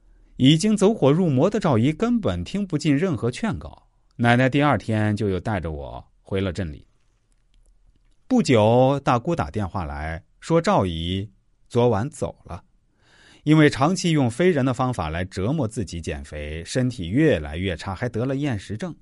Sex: male